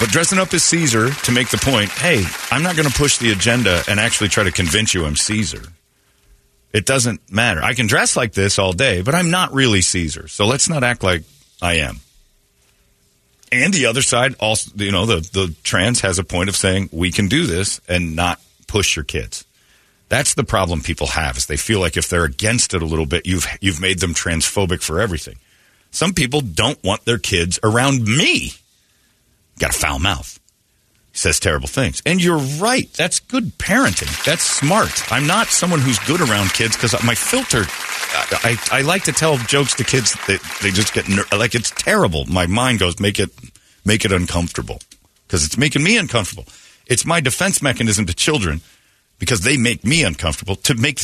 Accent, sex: American, male